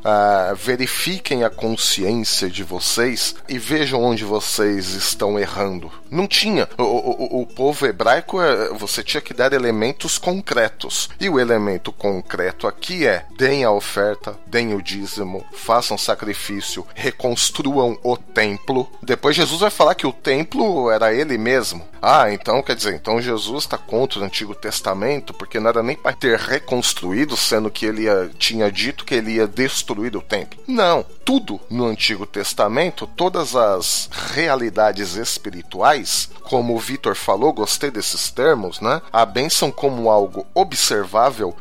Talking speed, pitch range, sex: 145 wpm, 105-130 Hz, male